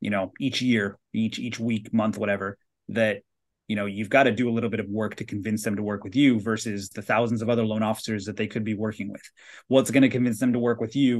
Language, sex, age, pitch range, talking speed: English, male, 30-49, 110-125 Hz, 270 wpm